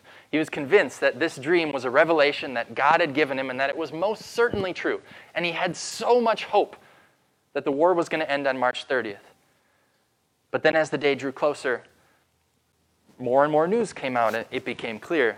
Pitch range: 135-175 Hz